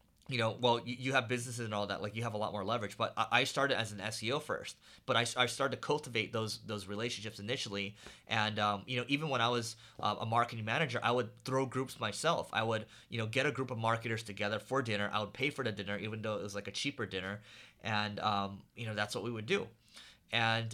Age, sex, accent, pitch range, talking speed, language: 30-49, male, American, 105-125 Hz, 245 wpm, English